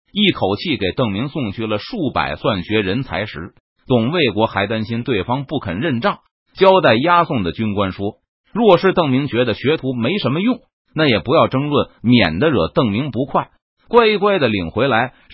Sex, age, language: male, 30-49, Chinese